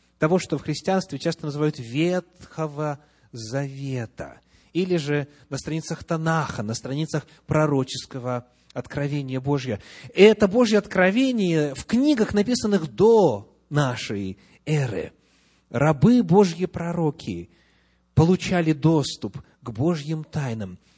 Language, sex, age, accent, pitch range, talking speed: Russian, male, 30-49, native, 115-180 Hz, 100 wpm